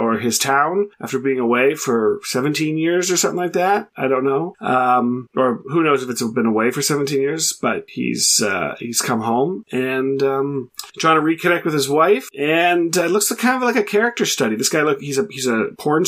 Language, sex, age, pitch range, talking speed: English, male, 30-49, 130-175 Hz, 225 wpm